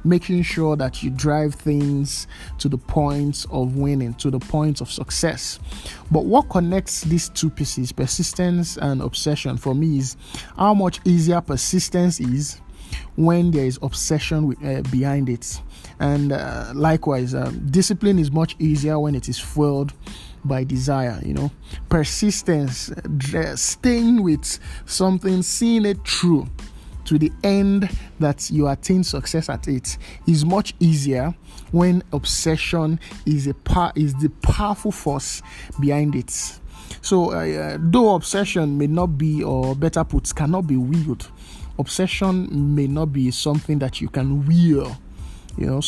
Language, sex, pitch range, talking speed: English, male, 135-175 Hz, 145 wpm